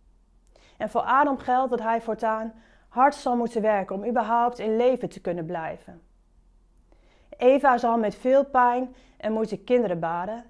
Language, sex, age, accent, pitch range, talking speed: Dutch, female, 30-49, Dutch, 205-255 Hz, 155 wpm